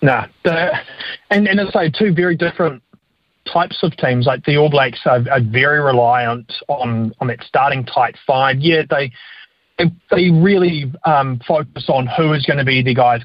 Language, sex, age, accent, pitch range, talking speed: English, male, 30-49, Australian, 120-155 Hz, 185 wpm